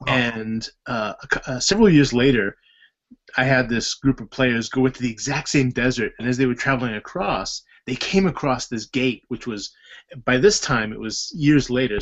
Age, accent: 20-39, American